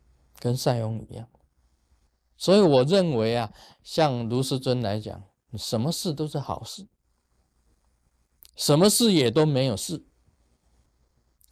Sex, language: male, Chinese